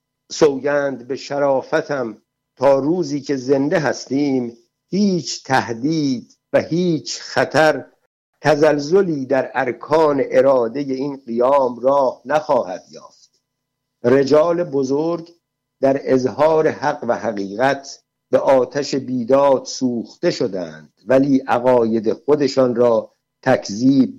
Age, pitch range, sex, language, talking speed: 60-79, 125-155 Hz, male, Persian, 95 wpm